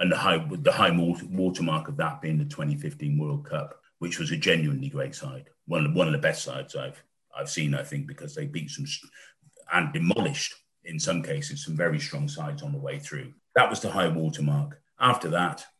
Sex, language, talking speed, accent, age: male, English, 205 wpm, British, 40-59